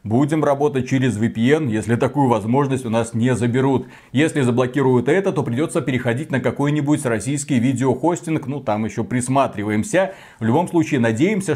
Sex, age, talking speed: male, 30-49, 150 wpm